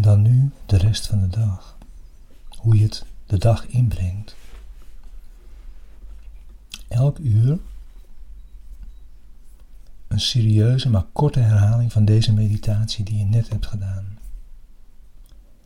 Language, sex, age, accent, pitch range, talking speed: Dutch, male, 60-79, Dutch, 95-115 Hz, 110 wpm